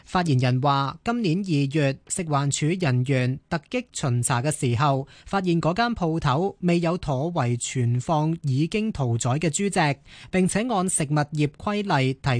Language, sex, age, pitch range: Chinese, male, 20-39, 135-180 Hz